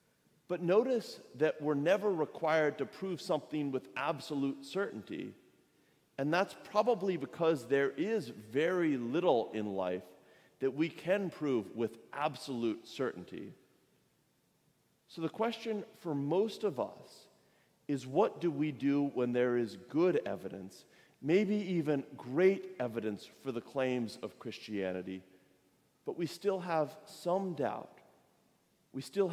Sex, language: male, English